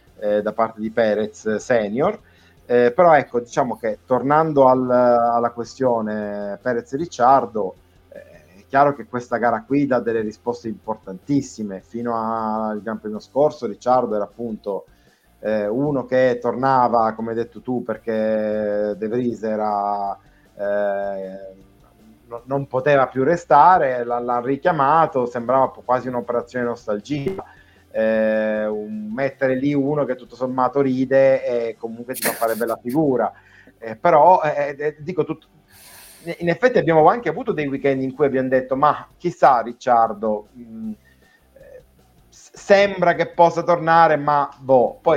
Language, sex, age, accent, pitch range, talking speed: Italian, male, 30-49, native, 110-140 Hz, 140 wpm